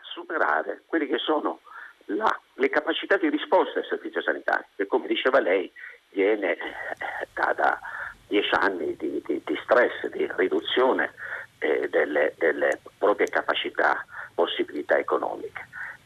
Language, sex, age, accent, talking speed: Italian, male, 50-69, native, 125 wpm